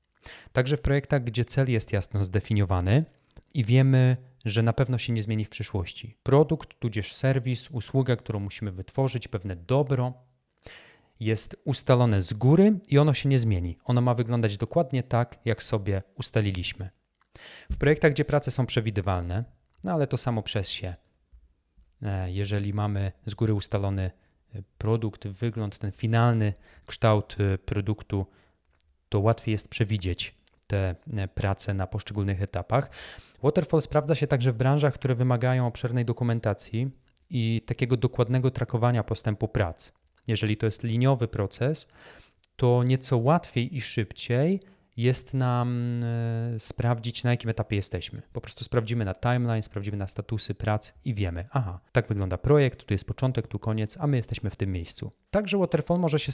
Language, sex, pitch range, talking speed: Polish, male, 100-130 Hz, 150 wpm